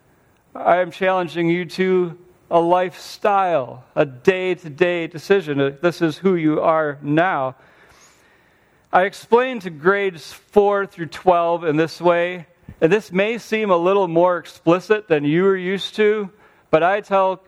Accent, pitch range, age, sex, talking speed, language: American, 150-190 Hz, 40-59, male, 145 wpm, English